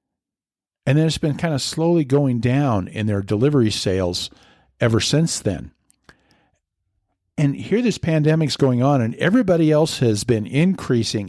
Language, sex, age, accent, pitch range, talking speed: English, male, 50-69, American, 115-155 Hz, 150 wpm